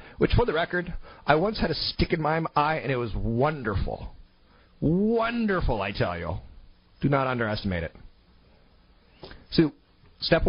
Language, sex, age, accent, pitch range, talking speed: English, male, 40-59, American, 100-140 Hz, 150 wpm